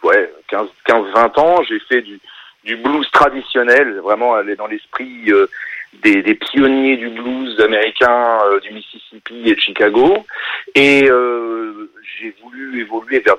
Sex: male